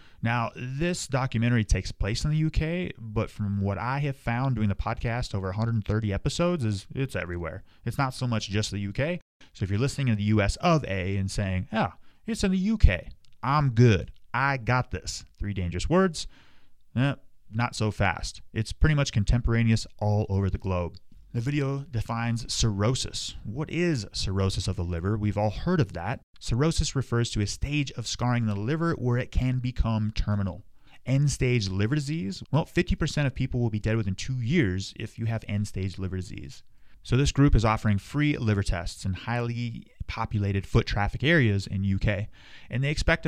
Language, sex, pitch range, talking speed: English, male, 100-135 Hz, 185 wpm